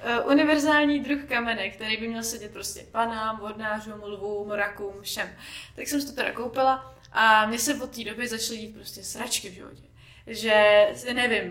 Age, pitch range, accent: 20-39, 215-275 Hz, native